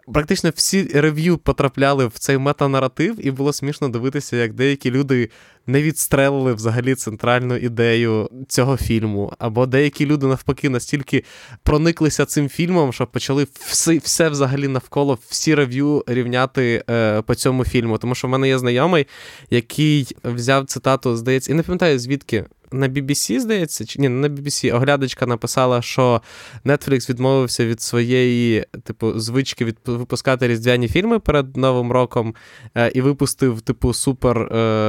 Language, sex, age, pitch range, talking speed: Ukrainian, male, 20-39, 120-140 Hz, 145 wpm